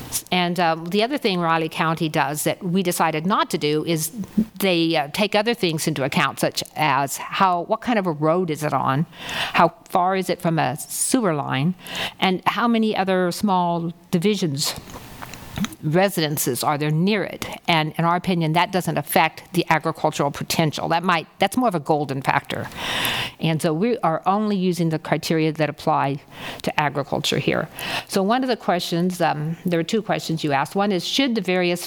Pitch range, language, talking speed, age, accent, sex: 150-180 Hz, English, 190 wpm, 50-69, American, female